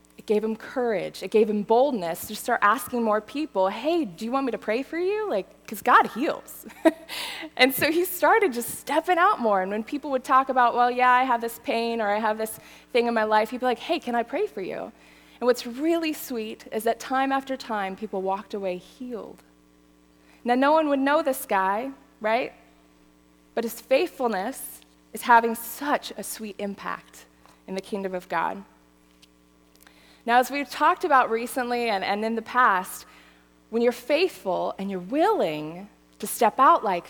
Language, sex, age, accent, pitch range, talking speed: English, female, 20-39, American, 175-250 Hz, 190 wpm